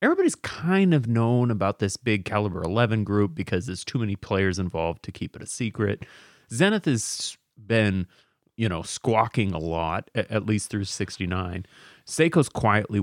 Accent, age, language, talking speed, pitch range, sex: American, 30-49, English, 160 wpm, 95-130 Hz, male